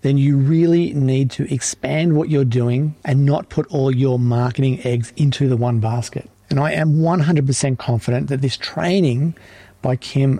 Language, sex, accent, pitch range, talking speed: English, male, Australian, 125-150 Hz, 175 wpm